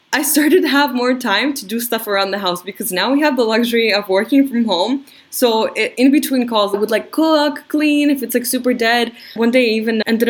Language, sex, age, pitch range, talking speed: English, female, 10-29, 190-240 Hz, 240 wpm